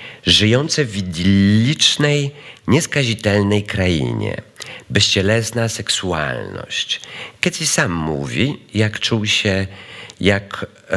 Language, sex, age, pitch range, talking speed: Polish, male, 50-69, 95-125 Hz, 75 wpm